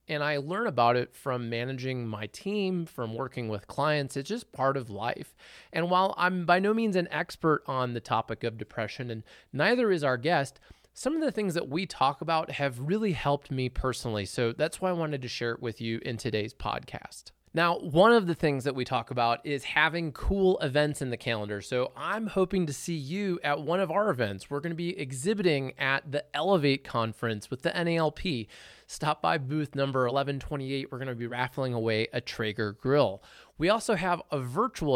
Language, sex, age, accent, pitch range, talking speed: English, male, 20-39, American, 120-170 Hz, 205 wpm